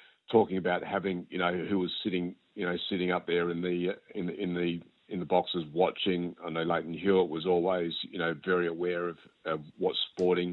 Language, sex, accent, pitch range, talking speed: English, male, Australian, 85-95 Hz, 210 wpm